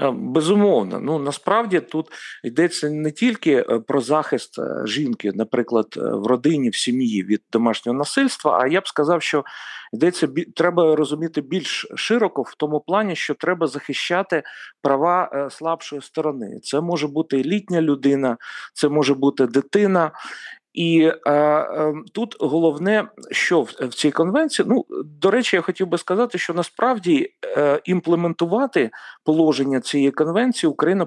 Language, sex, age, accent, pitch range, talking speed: Ukrainian, male, 40-59, native, 145-180 Hz, 135 wpm